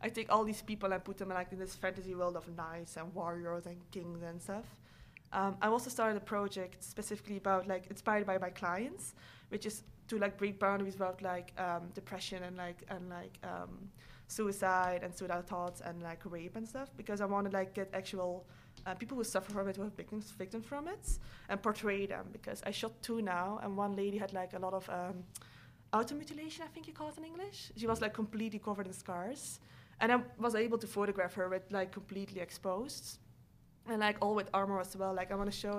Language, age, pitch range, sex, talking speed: English, 20-39, 185-215 Hz, female, 220 wpm